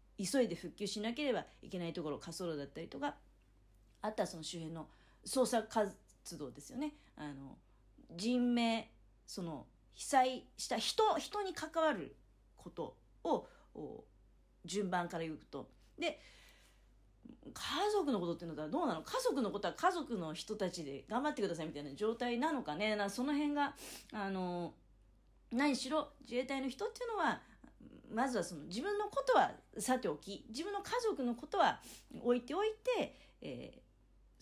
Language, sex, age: Japanese, female, 40-59